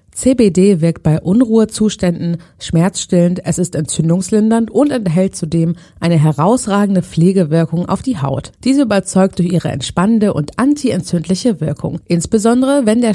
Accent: German